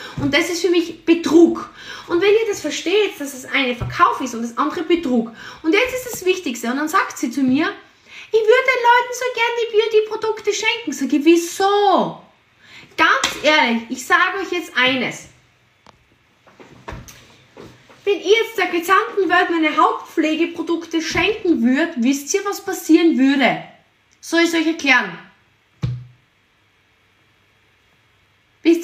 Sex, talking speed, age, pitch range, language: female, 150 wpm, 20-39, 230-355 Hz, German